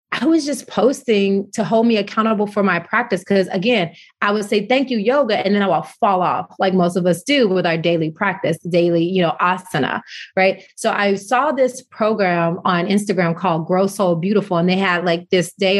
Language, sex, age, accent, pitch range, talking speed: English, female, 30-49, American, 175-215 Hz, 215 wpm